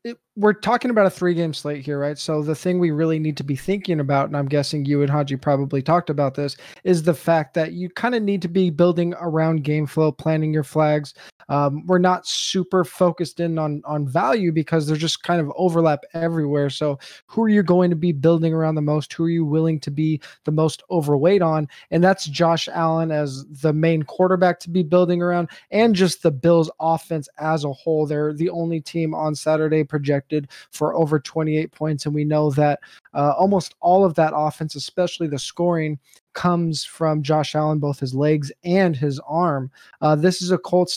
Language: English